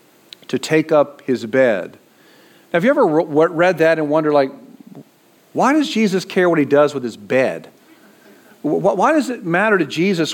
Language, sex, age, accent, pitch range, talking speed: English, male, 50-69, American, 135-175 Hz, 185 wpm